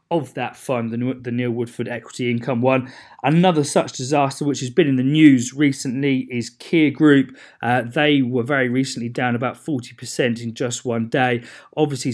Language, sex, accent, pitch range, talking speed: English, male, British, 120-145 Hz, 175 wpm